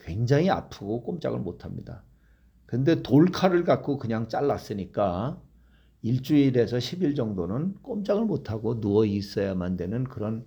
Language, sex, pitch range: Korean, male, 100-145 Hz